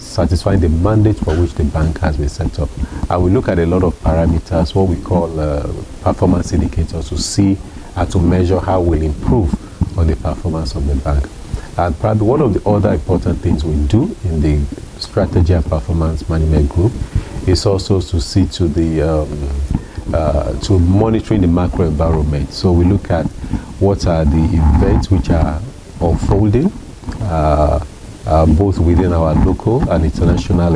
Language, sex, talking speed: English, male, 175 wpm